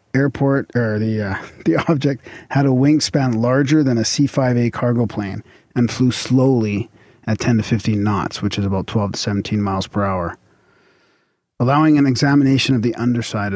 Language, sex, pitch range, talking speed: English, male, 105-130 Hz, 170 wpm